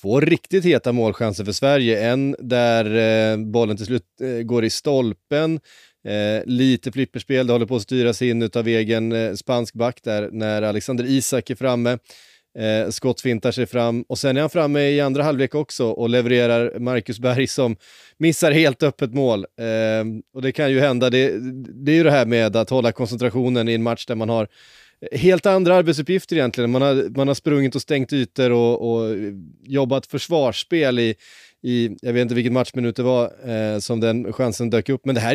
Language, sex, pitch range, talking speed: Swedish, male, 115-130 Hz, 195 wpm